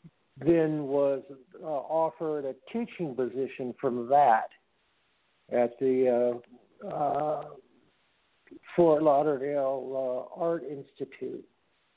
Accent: American